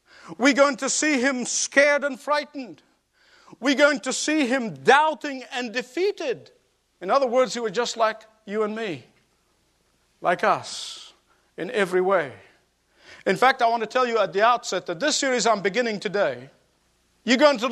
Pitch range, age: 235-295 Hz, 50-69